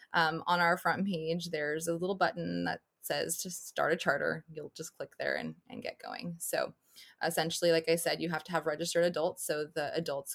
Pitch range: 155-185 Hz